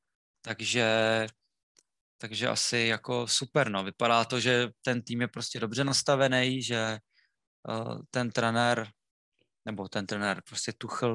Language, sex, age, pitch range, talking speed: Czech, male, 20-39, 115-130 Hz, 130 wpm